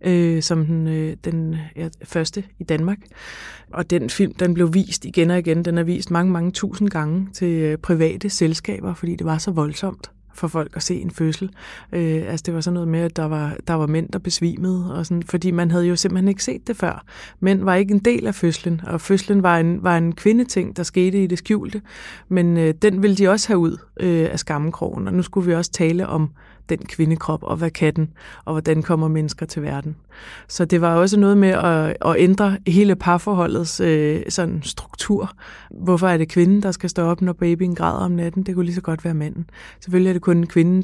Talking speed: 220 wpm